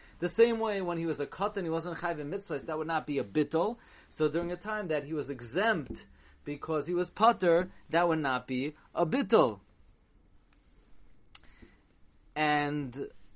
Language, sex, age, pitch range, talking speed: English, male, 30-49, 130-160 Hz, 170 wpm